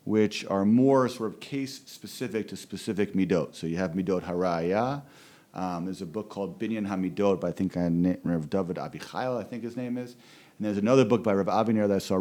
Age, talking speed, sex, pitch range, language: 40-59, 205 wpm, male, 100-125 Hz, English